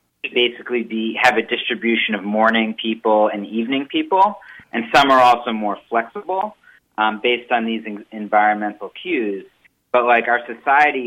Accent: American